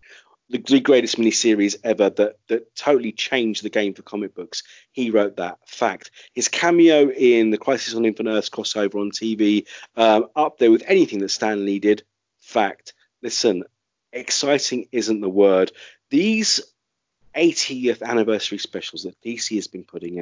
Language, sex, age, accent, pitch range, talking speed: English, male, 30-49, British, 105-130 Hz, 155 wpm